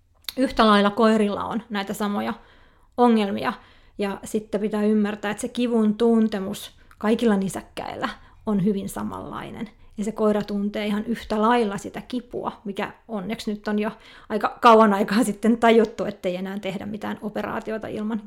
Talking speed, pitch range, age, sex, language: 150 wpm, 205-230 Hz, 30-49, female, Finnish